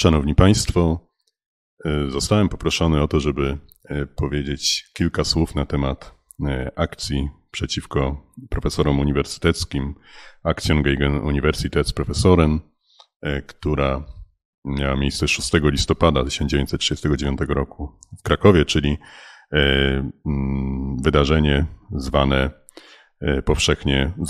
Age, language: 40-59, Polish